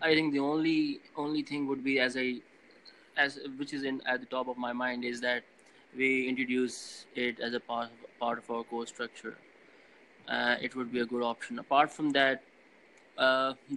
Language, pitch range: English, 120-140 Hz